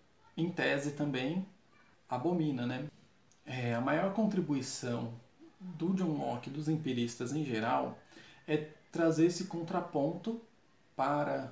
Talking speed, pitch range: 115 wpm, 135-170 Hz